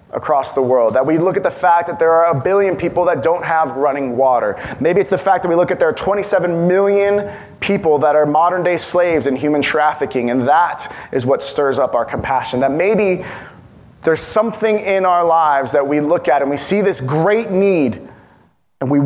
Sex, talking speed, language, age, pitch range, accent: male, 210 wpm, English, 20-39, 150-195 Hz, American